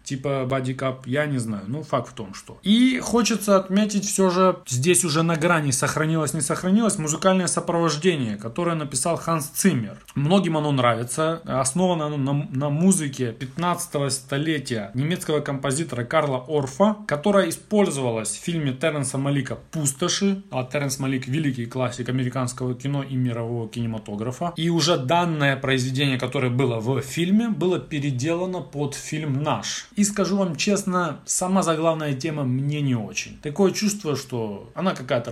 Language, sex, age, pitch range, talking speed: Russian, male, 20-39, 130-175 Hz, 150 wpm